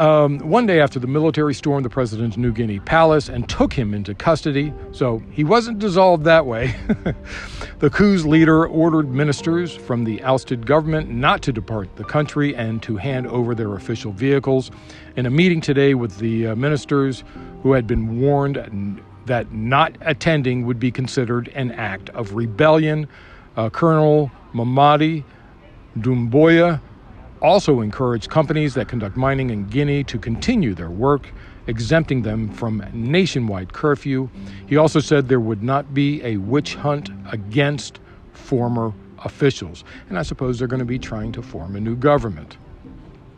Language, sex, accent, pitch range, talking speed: English, male, American, 110-150 Hz, 155 wpm